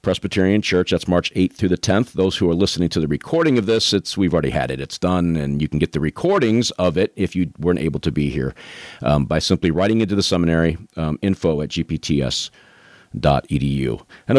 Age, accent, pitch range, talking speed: 40-59, American, 80-100 Hz, 215 wpm